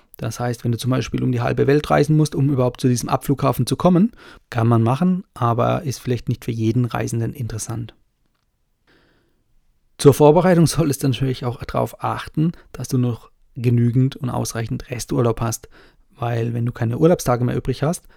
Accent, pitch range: German, 120-140 Hz